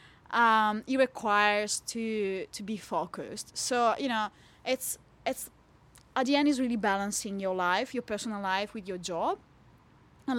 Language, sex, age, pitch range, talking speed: English, female, 20-39, 195-235 Hz, 155 wpm